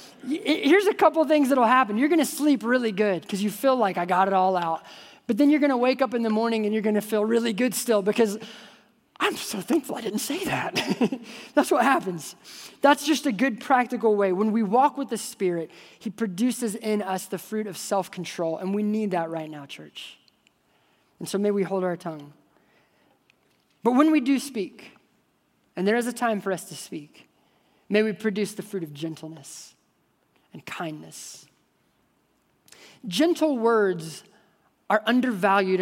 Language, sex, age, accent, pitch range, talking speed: English, male, 20-39, American, 170-235 Hz, 190 wpm